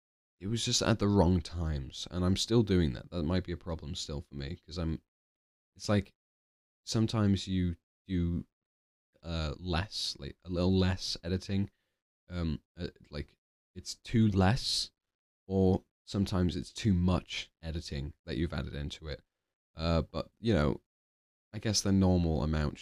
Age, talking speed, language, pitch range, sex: 20-39, 155 wpm, English, 80-100 Hz, male